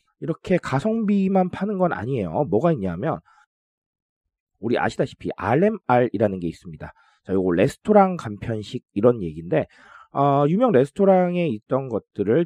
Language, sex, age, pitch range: Korean, male, 40-59, 105-180 Hz